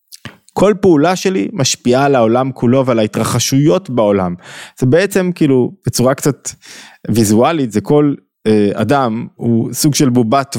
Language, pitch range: Hebrew, 115-145 Hz